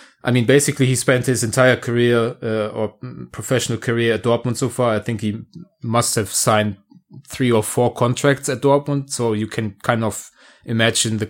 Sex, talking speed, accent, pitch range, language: male, 185 wpm, German, 105-125 Hz, English